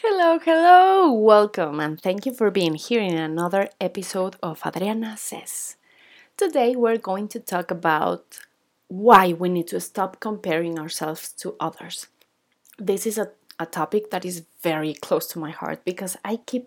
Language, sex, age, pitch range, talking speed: English, female, 30-49, 175-230 Hz, 160 wpm